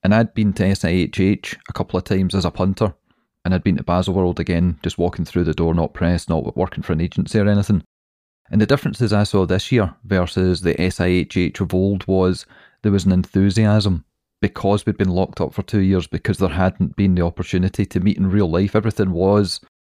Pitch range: 90-105 Hz